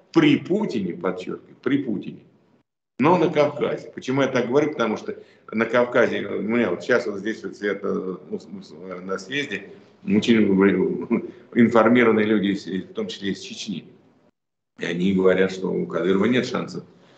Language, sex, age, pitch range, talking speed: Russian, male, 50-69, 100-150 Hz, 145 wpm